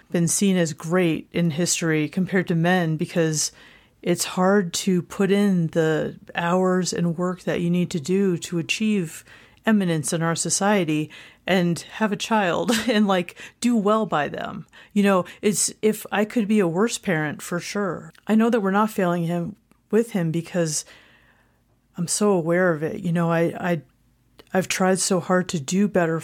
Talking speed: 180 wpm